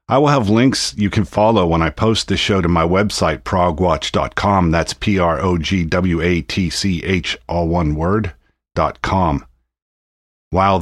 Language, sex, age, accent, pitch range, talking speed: English, male, 50-69, American, 80-110 Hz, 135 wpm